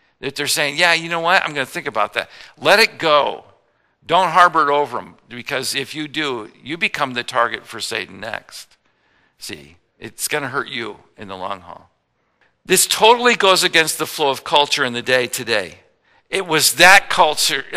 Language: English